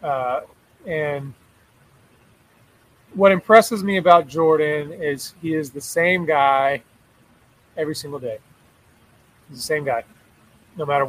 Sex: male